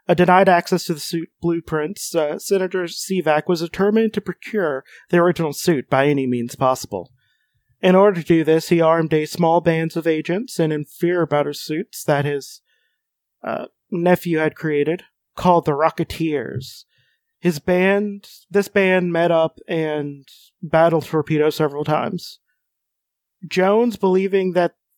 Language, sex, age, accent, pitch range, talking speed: English, male, 30-49, American, 150-185 Hz, 150 wpm